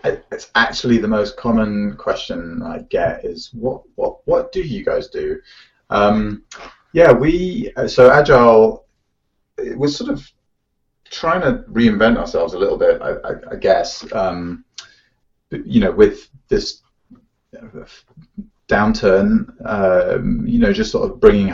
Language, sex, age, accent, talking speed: English, male, 30-49, British, 135 wpm